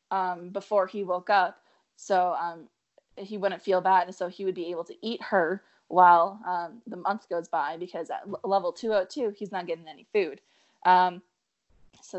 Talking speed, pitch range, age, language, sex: 185 wpm, 175-205 Hz, 20-39, English, female